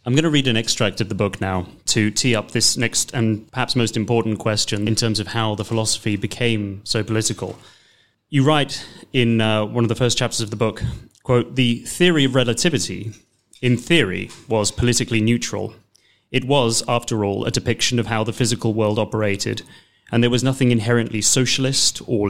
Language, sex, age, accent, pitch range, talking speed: English, male, 30-49, British, 110-125 Hz, 190 wpm